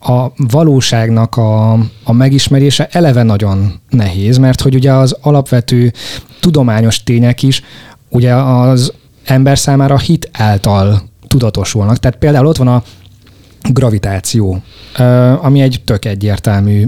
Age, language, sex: 20-39, Hungarian, male